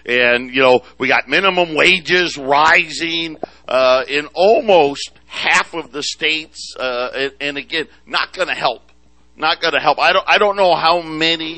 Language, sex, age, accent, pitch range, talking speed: English, male, 50-69, American, 120-145 Hz, 165 wpm